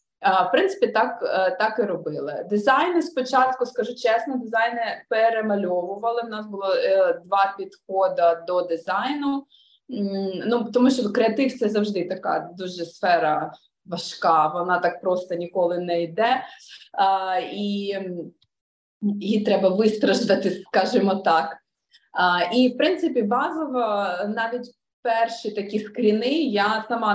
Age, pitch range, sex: 20-39, 185-245 Hz, female